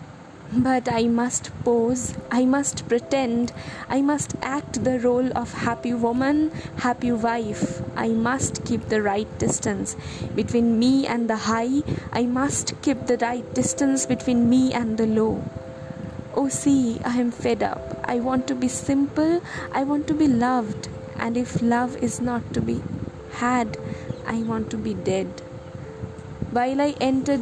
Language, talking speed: Bengali, 155 wpm